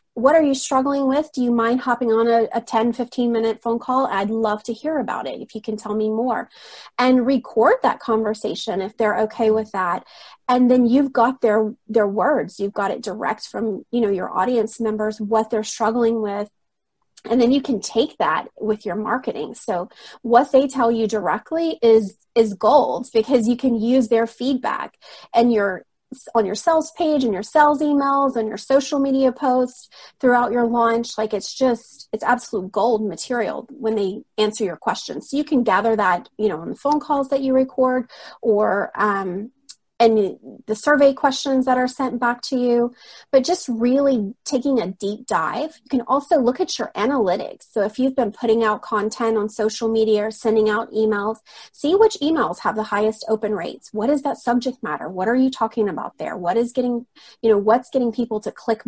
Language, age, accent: English, 30-49, American